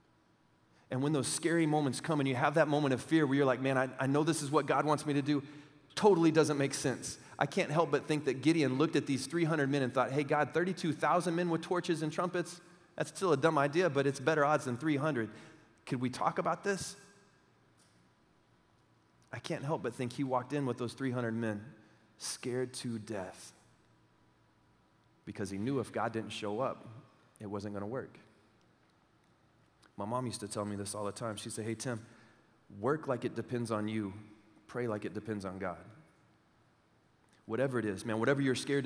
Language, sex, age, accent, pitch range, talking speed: English, male, 30-49, American, 120-150 Hz, 200 wpm